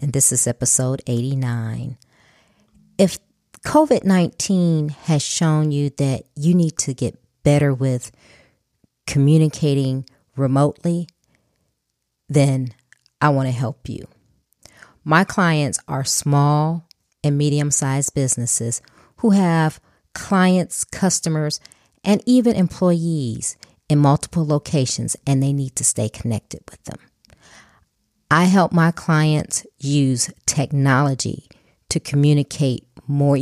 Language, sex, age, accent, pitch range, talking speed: English, female, 40-59, American, 130-165 Hz, 105 wpm